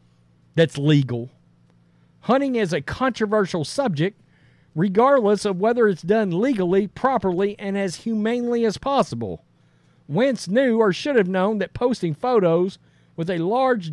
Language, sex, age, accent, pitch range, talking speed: English, male, 50-69, American, 160-245 Hz, 135 wpm